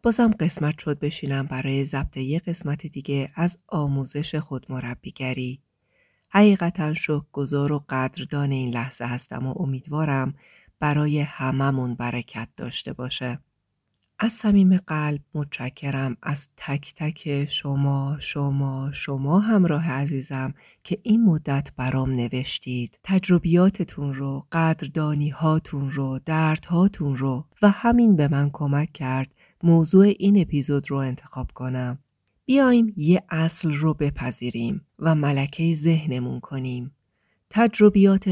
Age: 40-59